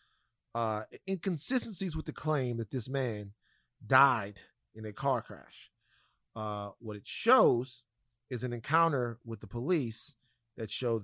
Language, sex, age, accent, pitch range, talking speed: English, male, 30-49, American, 105-130 Hz, 135 wpm